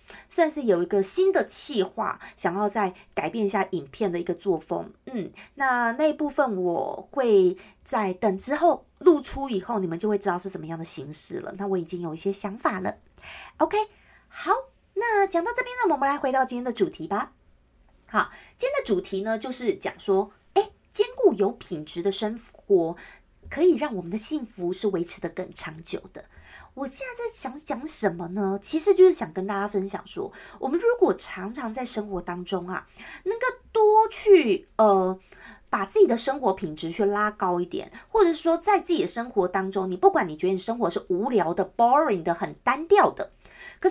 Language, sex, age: Chinese, female, 30-49